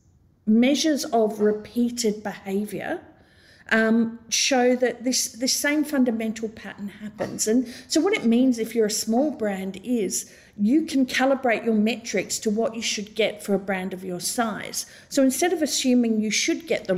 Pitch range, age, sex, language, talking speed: 195-255 Hz, 50-69, female, English, 170 wpm